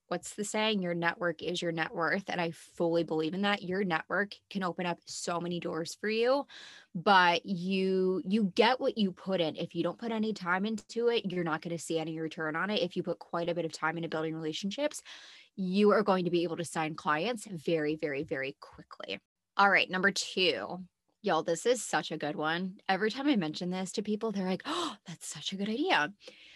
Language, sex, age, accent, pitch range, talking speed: English, female, 20-39, American, 165-210 Hz, 225 wpm